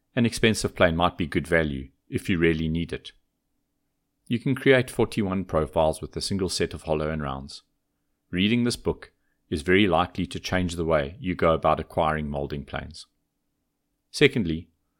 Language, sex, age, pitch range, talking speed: English, male, 40-59, 80-105 Hz, 170 wpm